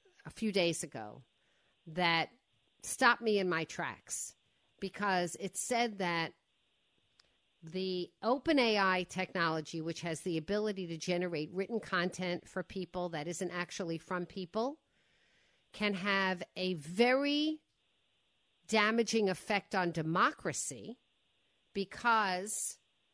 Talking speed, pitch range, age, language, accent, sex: 110 wpm, 180-235 Hz, 50-69, English, American, female